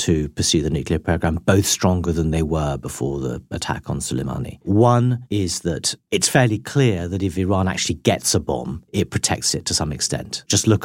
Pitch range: 85-115 Hz